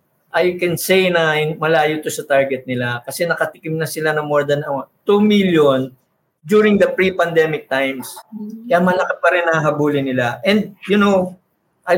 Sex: male